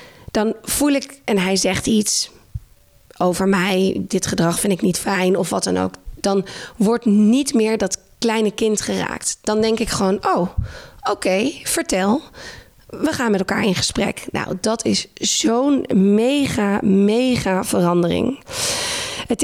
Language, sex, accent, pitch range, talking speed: Dutch, female, Dutch, 200-260 Hz, 150 wpm